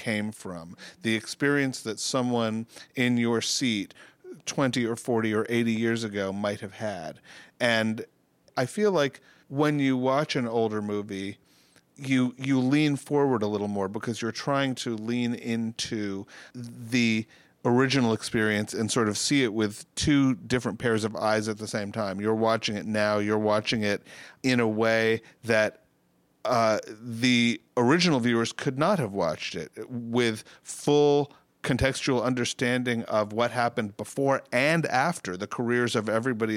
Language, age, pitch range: English, 40-59, 110-125 Hz